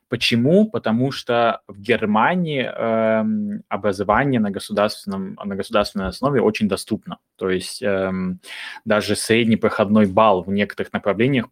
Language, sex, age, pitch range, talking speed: Russian, male, 20-39, 105-125 Hz, 110 wpm